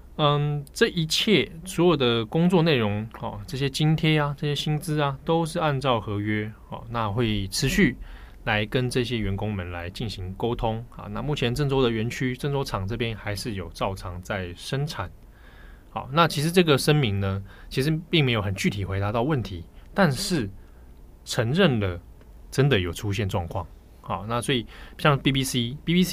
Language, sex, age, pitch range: Chinese, male, 20-39, 100-145 Hz